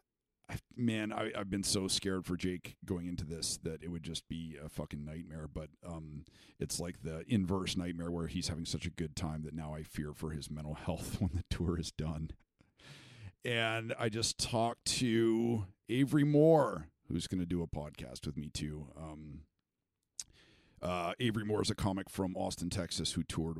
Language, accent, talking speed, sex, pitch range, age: English, American, 190 wpm, male, 80-110 Hz, 50-69